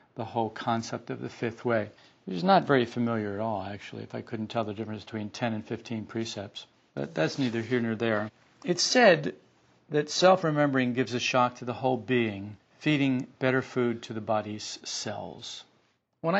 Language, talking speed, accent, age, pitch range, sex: English, 185 wpm, American, 50-69, 110-135 Hz, male